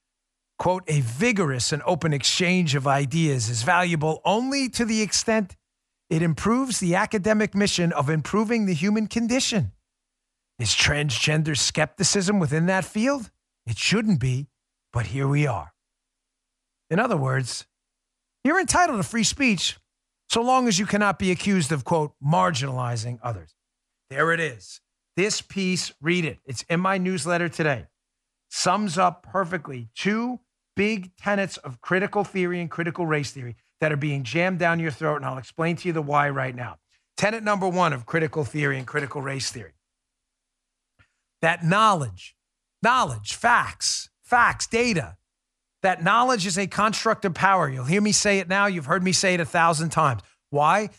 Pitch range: 145-200 Hz